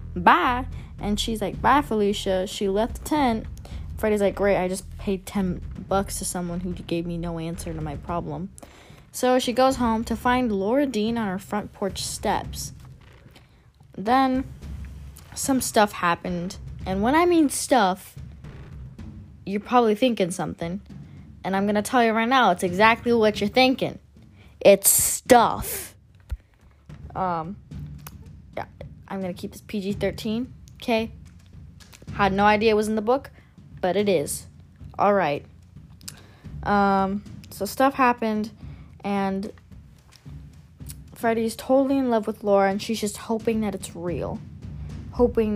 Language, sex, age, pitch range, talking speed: English, female, 20-39, 180-225 Hz, 145 wpm